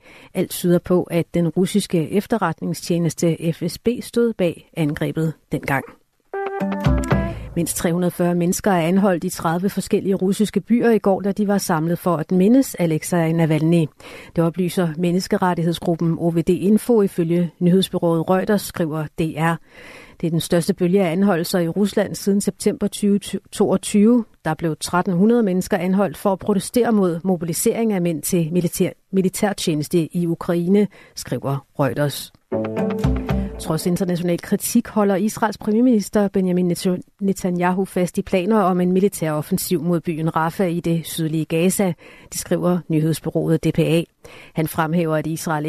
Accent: native